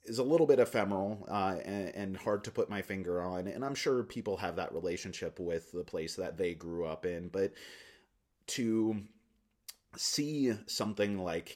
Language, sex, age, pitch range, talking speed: English, male, 30-49, 90-110 Hz, 175 wpm